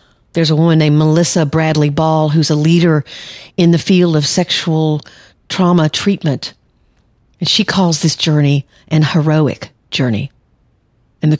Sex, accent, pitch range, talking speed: female, American, 150-180 Hz, 140 wpm